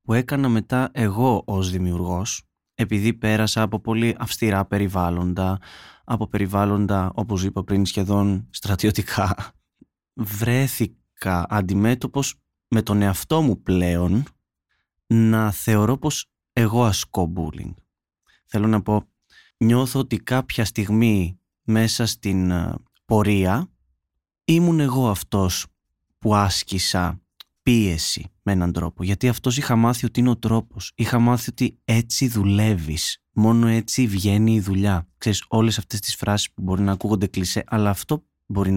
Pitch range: 95-115 Hz